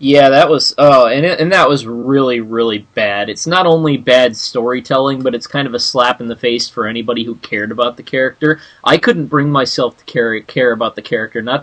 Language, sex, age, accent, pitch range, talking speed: English, male, 20-39, American, 105-135 Hz, 225 wpm